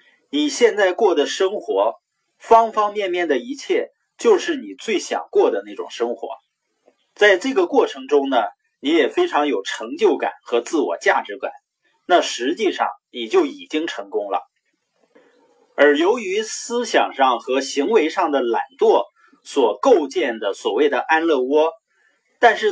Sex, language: male, Chinese